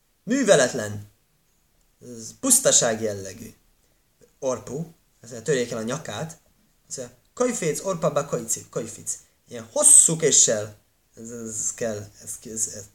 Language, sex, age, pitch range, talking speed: Hungarian, male, 20-39, 120-200 Hz, 105 wpm